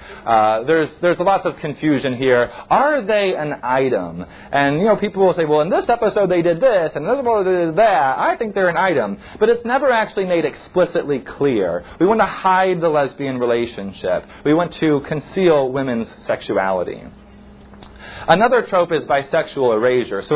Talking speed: 185 wpm